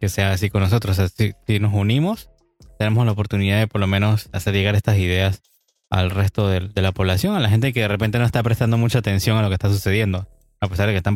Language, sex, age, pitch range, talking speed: Spanish, male, 20-39, 100-110 Hz, 245 wpm